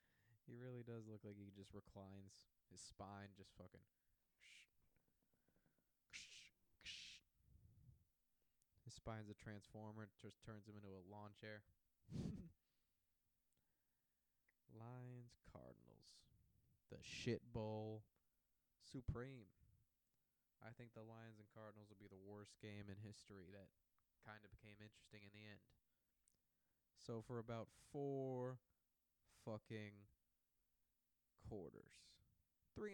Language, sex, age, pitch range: English, male, 20-39, 100-120 Hz